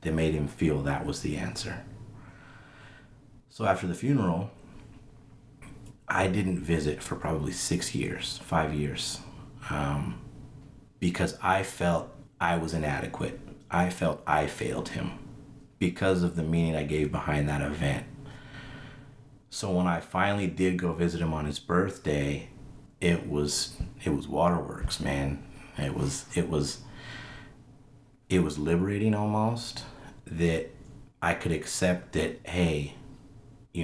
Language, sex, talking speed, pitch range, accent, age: English, male, 130 wpm, 80-115 Hz, American, 30-49